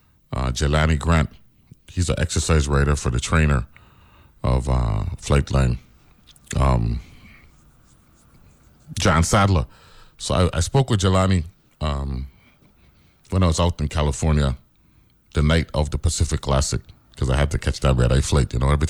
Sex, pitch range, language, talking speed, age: male, 70-95 Hz, English, 145 wpm, 30-49